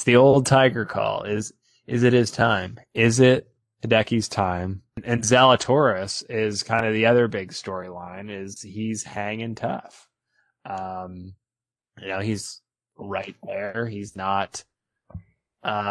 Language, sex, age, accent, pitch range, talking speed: English, male, 20-39, American, 105-120 Hz, 130 wpm